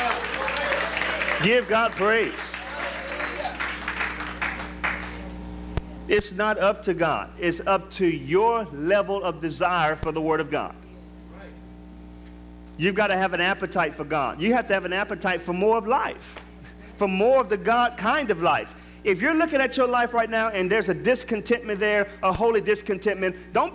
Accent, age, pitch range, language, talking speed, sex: American, 40-59, 155-225 Hz, English, 160 wpm, male